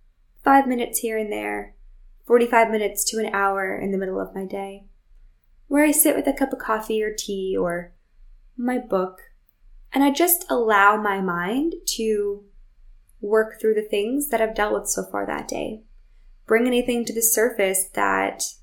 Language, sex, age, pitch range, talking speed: English, female, 10-29, 190-225 Hz, 175 wpm